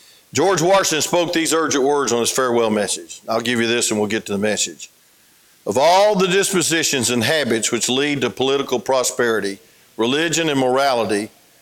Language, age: English, 50-69